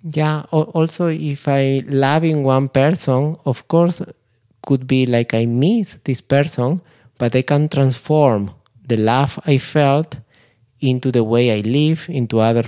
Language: Slovak